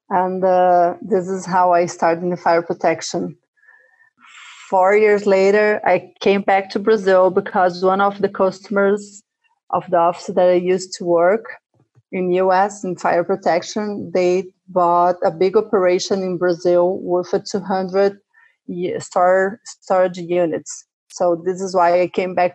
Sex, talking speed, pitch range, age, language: female, 155 wpm, 180-200 Hz, 30-49, English